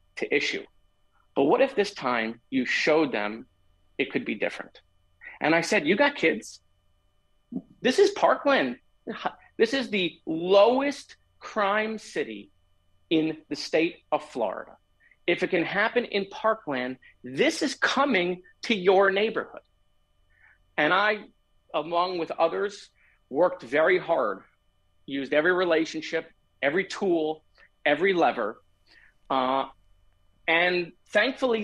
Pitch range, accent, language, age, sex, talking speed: 140-215 Hz, American, English, 40-59, male, 120 wpm